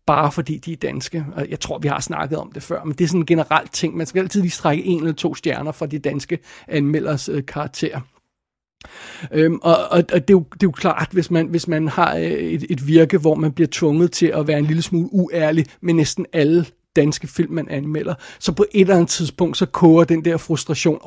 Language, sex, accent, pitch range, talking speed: Danish, male, native, 150-170 Hz, 230 wpm